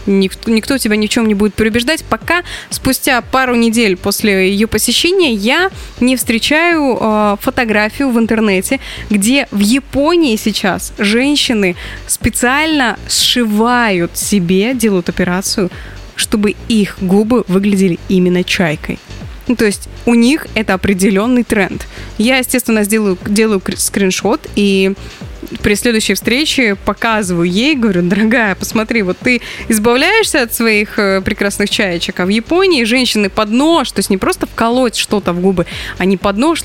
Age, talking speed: 20-39, 135 wpm